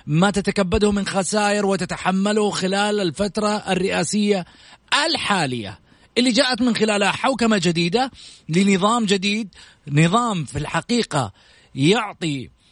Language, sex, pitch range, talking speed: Arabic, male, 145-200 Hz, 100 wpm